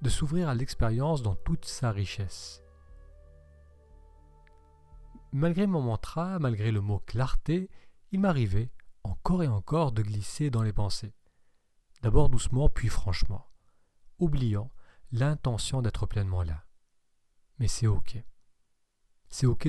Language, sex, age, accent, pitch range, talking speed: French, male, 40-59, French, 95-130 Hz, 120 wpm